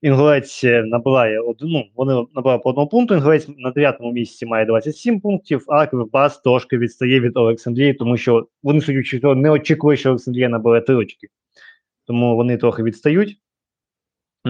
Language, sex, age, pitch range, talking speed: Ukrainian, male, 20-39, 120-155 Hz, 145 wpm